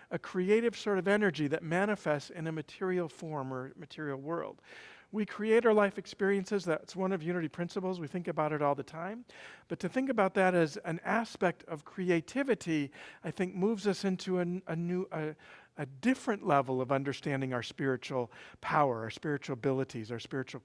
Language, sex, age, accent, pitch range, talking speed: English, male, 50-69, American, 155-200 Hz, 185 wpm